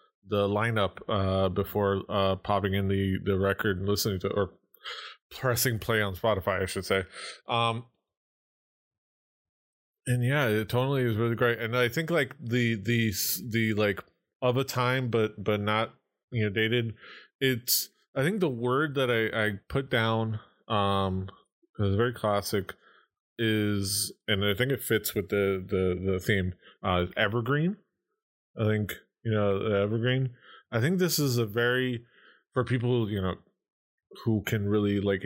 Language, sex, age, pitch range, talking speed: English, male, 20-39, 95-120 Hz, 160 wpm